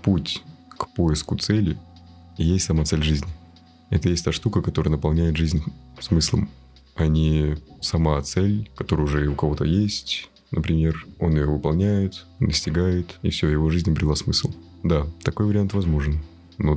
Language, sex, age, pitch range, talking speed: Russian, male, 20-39, 75-90 Hz, 150 wpm